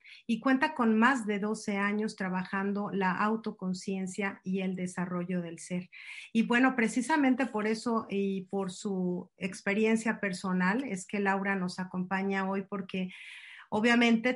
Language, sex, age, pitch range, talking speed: Spanish, female, 40-59, 185-215 Hz, 140 wpm